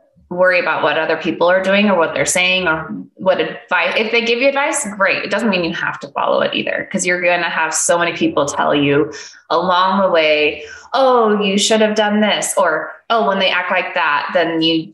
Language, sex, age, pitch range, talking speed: English, female, 20-39, 165-205 Hz, 230 wpm